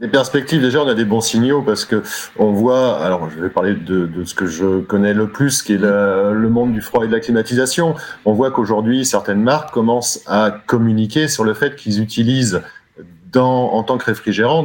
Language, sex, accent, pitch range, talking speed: French, male, French, 105-130 Hz, 215 wpm